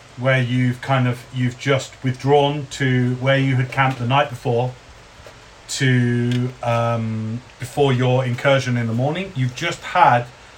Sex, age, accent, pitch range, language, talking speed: male, 30-49, British, 120-145 Hz, English, 145 wpm